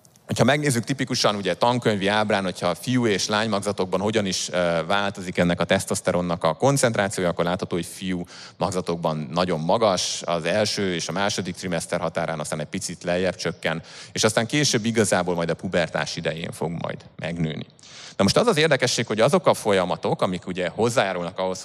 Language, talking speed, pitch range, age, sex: Hungarian, 175 wpm, 85-115 Hz, 30-49, male